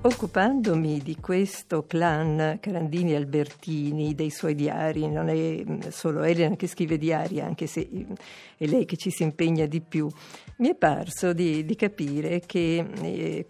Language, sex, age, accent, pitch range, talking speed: Italian, female, 50-69, native, 155-180 Hz, 145 wpm